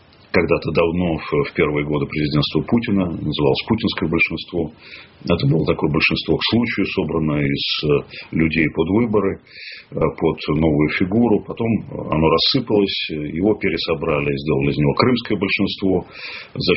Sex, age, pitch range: male, 40-59, 80-105 Hz